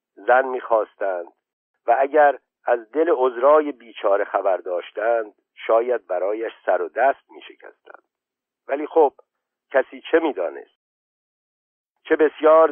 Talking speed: 115 wpm